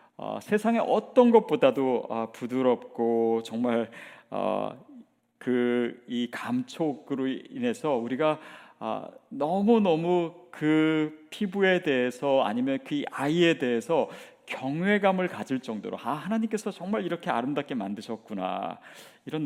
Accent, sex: native, male